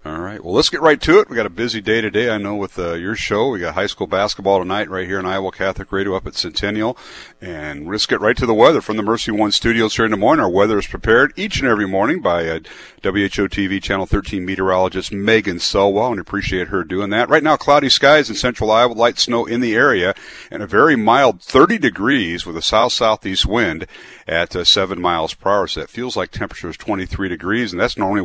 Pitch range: 95-125 Hz